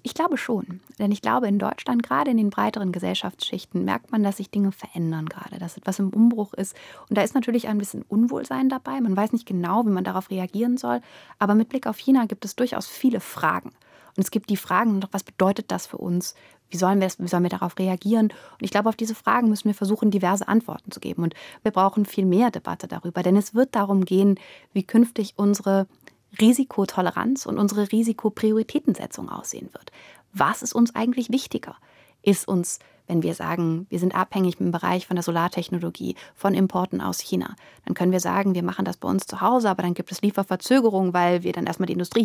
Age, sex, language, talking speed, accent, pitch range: 30-49, female, German, 205 wpm, German, 185-225 Hz